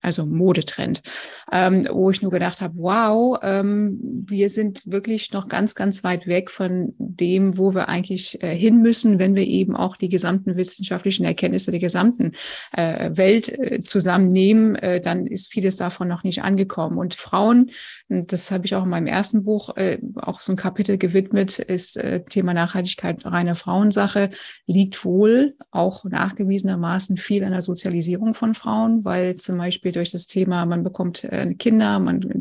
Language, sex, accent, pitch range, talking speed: German, female, German, 185-210 Hz, 165 wpm